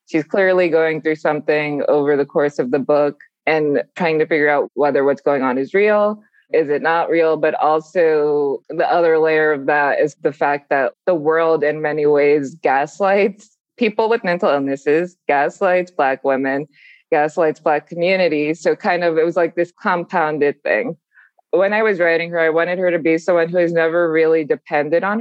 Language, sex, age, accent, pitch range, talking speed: English, female, 20-39, American, 145-175 Hz, 190 wpm